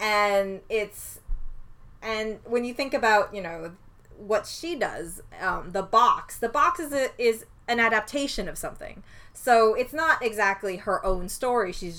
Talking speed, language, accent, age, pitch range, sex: 160 wpm, English, American, 20-39, 180-235 Hz, female